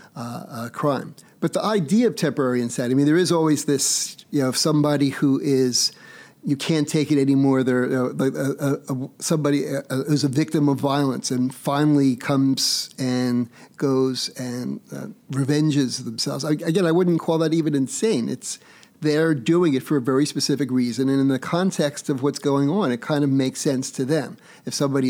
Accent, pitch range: American, 130-150 Hz